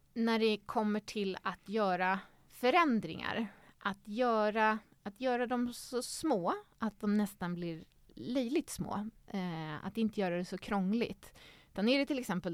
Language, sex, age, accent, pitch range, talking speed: Swedish, female, 30-49, native, 175-220 Hz, 155 wpm